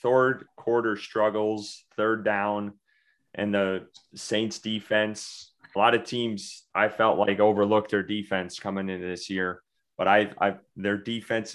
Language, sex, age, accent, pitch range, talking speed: English, male, 30-49, American, 95-110 Hz, 140 wpm